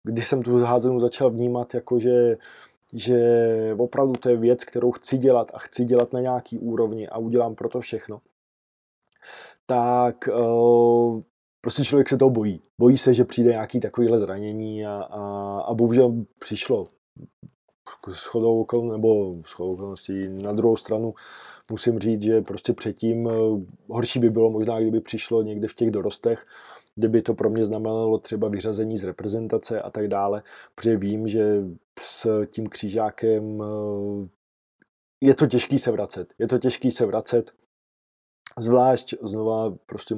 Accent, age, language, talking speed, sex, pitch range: native, 20-39, Czech, 145 wpm, male, 110-120 Hz